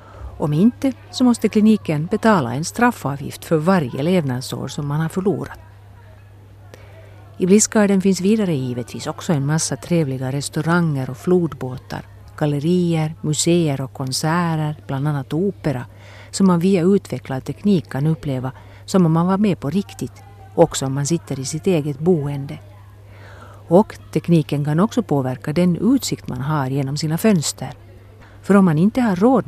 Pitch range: 110-185 Hz